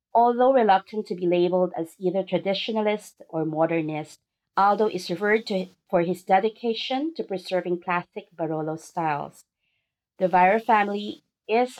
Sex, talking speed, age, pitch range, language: female, 130 wpm, 40-59, 165-205 Hz, English